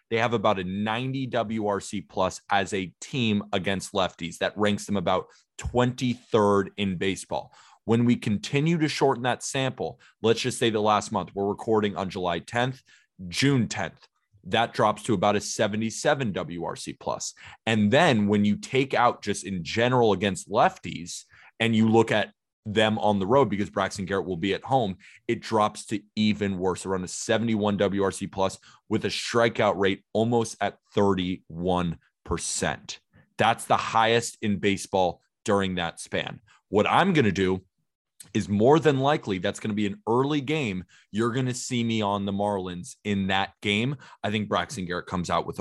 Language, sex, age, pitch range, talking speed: English, male, 20-39, 100-120 Hz, 175 wpm